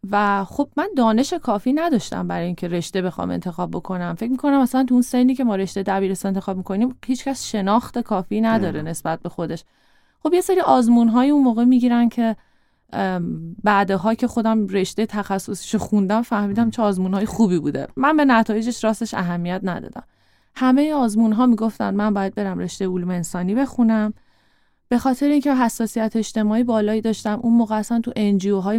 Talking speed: 165 wpm